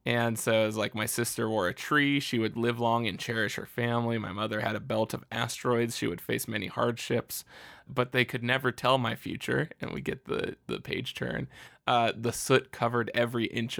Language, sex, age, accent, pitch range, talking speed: English, male, 20-39, American, 110-120 Hz, 220 wpm